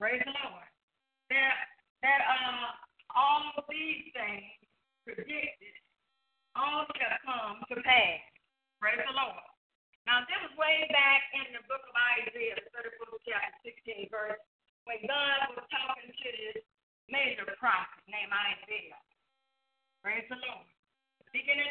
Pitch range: 230-285 Hz